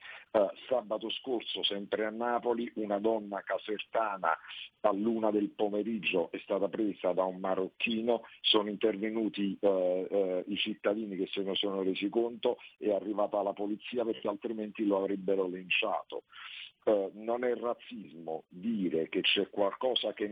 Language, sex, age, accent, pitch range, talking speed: Italian, male, 50-69, native, 100-115 Hz, 135 wpm